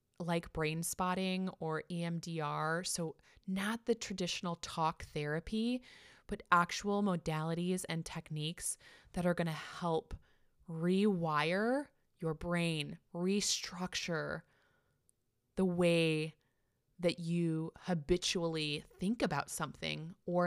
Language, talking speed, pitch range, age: English, 100 wpm, 160-205 Hz, 20-39